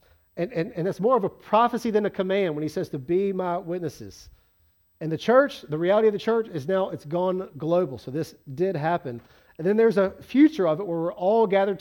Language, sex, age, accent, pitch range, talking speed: English, male, 40-59, American, 175-240 Hz, 235 wpm